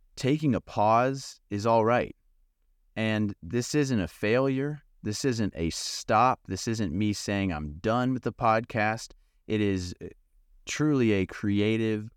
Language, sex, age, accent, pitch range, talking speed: English, male, 30-49, American, 80-110 Hz, 145 wpm